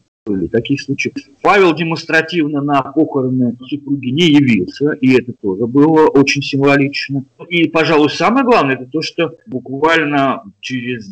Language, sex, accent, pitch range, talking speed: Russian, male, native, 120-160 Hz, 130 wpm